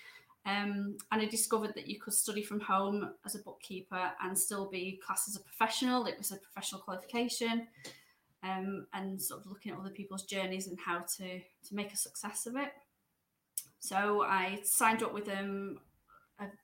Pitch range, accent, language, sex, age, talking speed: 190-215 Hz, British, English, female, 20-39, 180 wpm